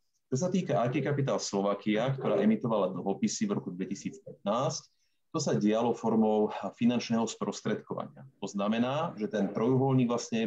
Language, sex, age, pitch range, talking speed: Slovak, male, 30-49, 100-135 Hz, 140 wpm